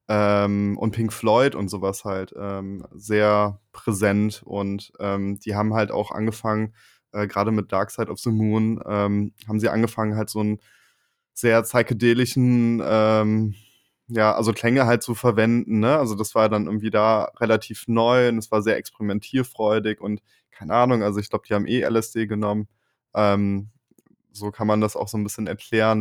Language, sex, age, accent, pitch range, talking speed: German, male, 20-39, German, 105-115 Hz, 175 wpm